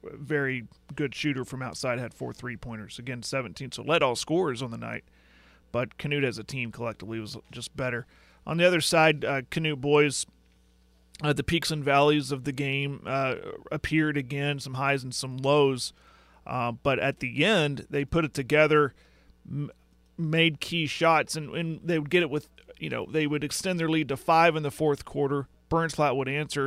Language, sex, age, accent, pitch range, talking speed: English, male, 40-59, American, 130-155 Hz, 195 wpm